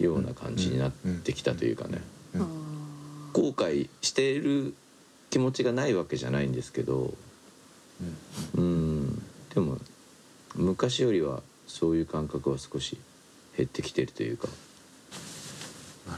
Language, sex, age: Japanese, male, 50-69